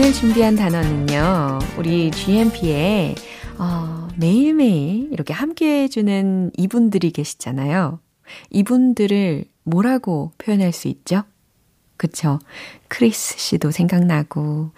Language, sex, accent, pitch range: Korean, female, native, 150-200 Hz